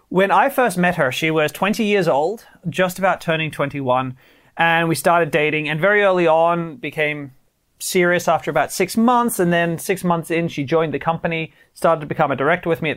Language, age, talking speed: English, 30-49, 210 wpm